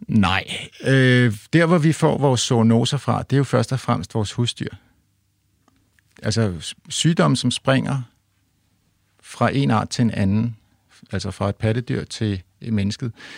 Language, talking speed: Danish, 150 wpm